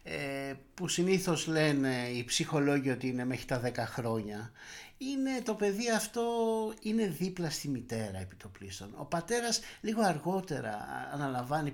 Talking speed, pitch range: 130 wpm, 130-185 Hz